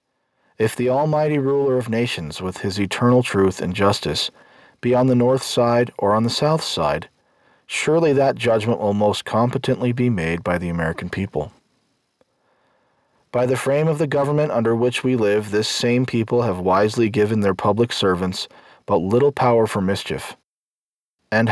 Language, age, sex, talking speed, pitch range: English, 40-59, male, 165 wpm, 95-125 Hz